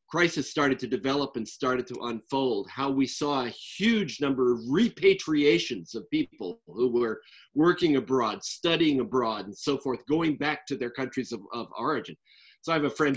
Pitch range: 115-150 Hz